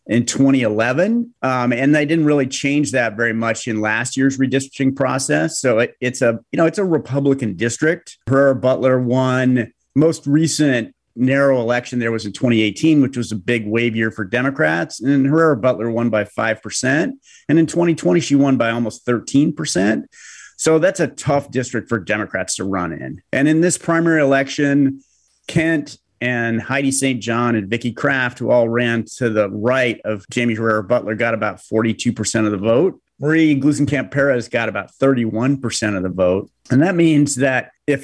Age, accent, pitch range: 40-59, American, 115-140 Hz